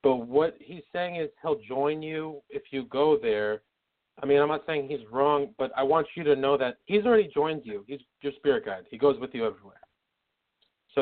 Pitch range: 130-165 Hz